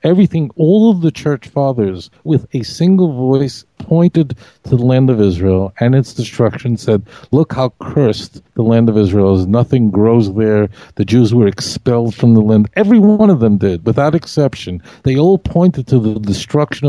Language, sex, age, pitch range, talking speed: English, male, 50-69, 115-155 Hz, 180 wpm